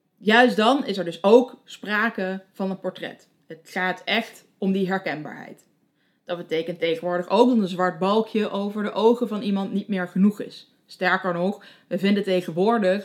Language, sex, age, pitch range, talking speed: Dutch, female, 20-39, 180-230 Hz, 175 wpm